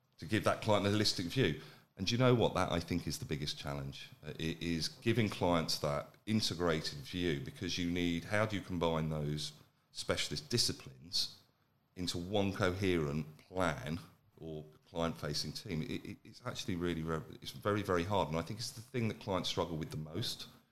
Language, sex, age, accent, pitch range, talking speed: English, male, 40-59, British, 85-120 Hz, 175 wpm